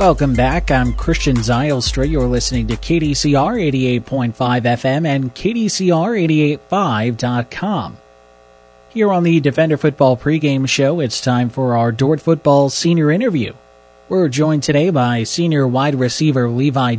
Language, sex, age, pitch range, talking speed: English, male, 30-49, 120-150 Hz, 130 wpm